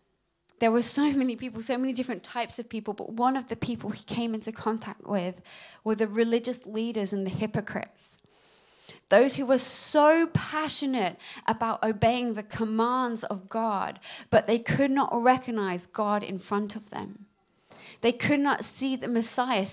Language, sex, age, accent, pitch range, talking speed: English, female, 20-39, British, 200-240 Hz, 165 wpm